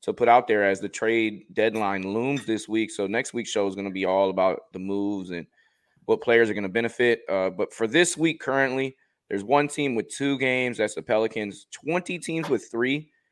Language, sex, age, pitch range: English, male, 20-39, 95-115 Hz